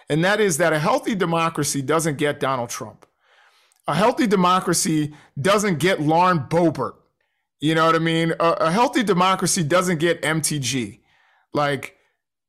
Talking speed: 150 wpm